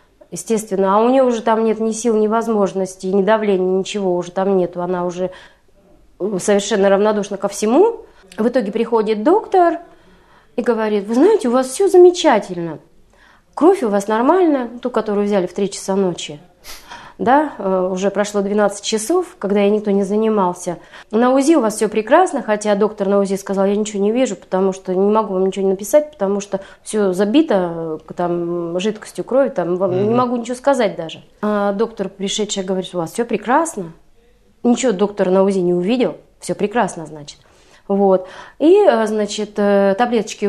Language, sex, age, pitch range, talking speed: Russian, female, 30-49, 190-245 Hz, 165 wpm